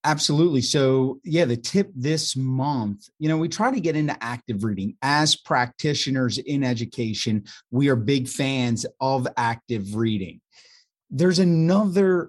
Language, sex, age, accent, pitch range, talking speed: English, male, 30-49, American, 125-165 Hz, 140 wpm